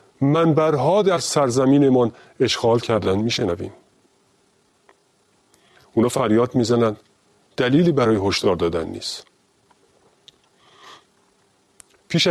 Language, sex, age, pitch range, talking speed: Persian, male, 40-59, 100-135 Hz, 75 wpm